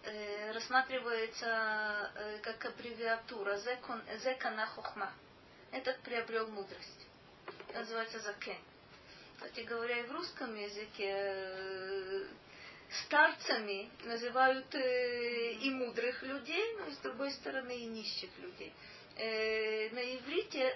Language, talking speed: Russian, 100 wpm